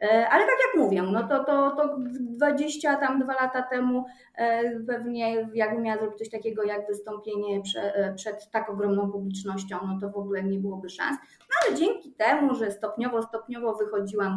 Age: 30-49